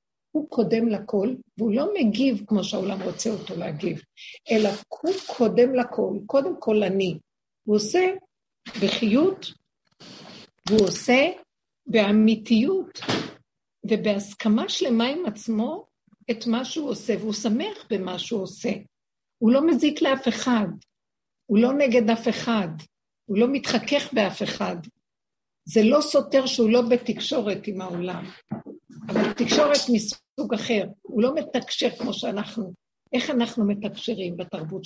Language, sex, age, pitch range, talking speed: Hebrew, female, 60-79, 210-260 Hz, 125 wpm